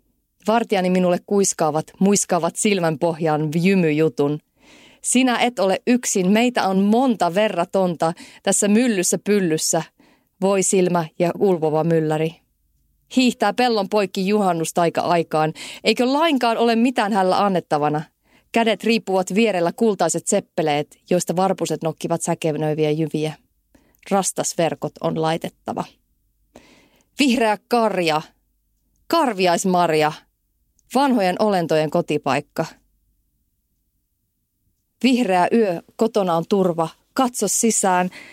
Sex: female